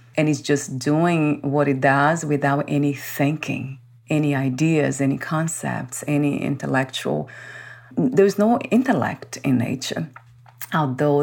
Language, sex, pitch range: English, female, 135-155 Hz